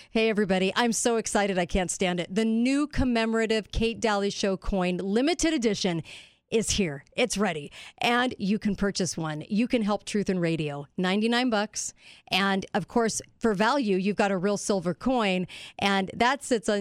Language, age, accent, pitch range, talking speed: English, 40-59, American, 185-225 Hz, 175 wpm